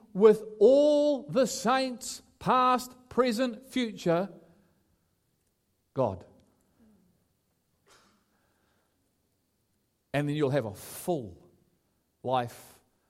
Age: 50-69